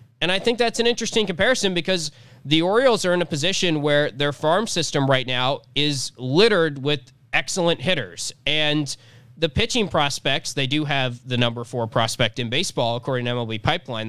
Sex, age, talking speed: male, 20-39, 180 wpm